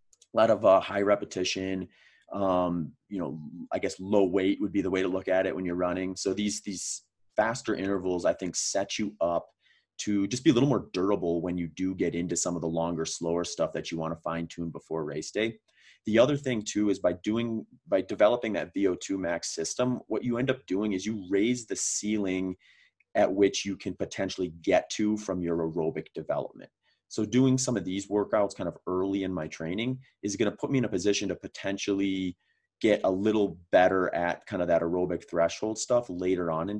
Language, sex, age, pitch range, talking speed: English, male, 30-49, 85-105 Hz, 215 wpm